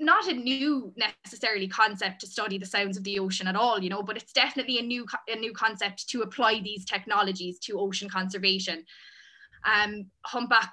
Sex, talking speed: female, 185 wpm